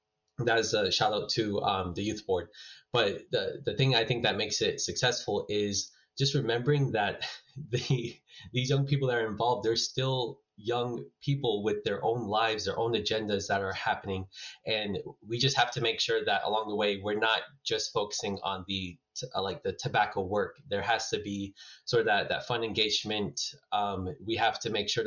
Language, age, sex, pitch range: English, 20-39, male, 105-125 Hz